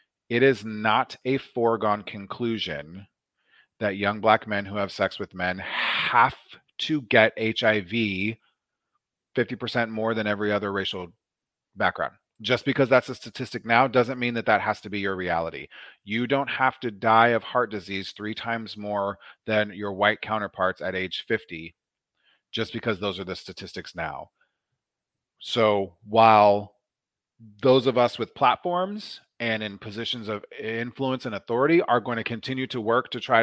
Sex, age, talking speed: male, 30-49, 160 wpm